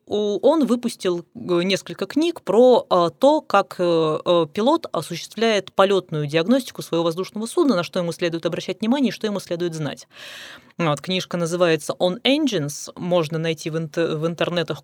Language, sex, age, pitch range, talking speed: Russian, female, 20-39, 160-215 Hz, 140 wpm